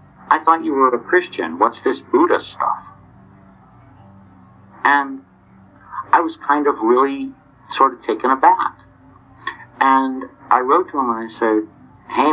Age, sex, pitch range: 60-79, male, 95-120 Hz